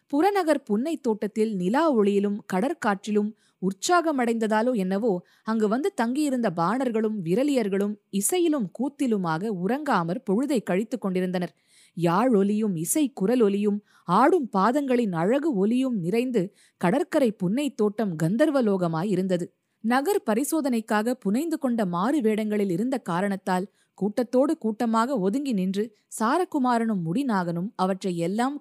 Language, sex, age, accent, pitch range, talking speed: Tamil, female, 20-39, native, 185-245 Hz, 105 wpm